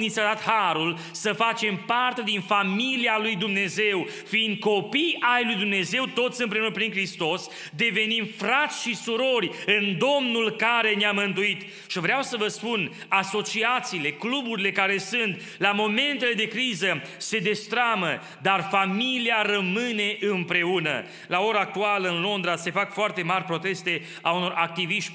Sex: male